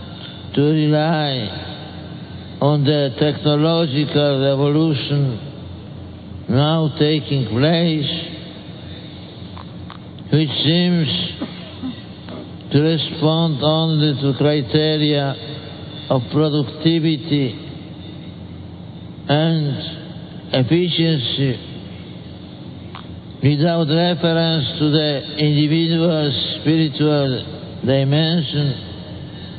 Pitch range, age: 135-155 Hz, 60-79